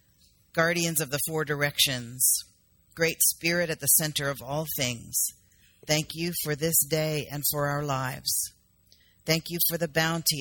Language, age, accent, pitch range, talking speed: English, 50-69, American, 130-160 Hz, 155 wpm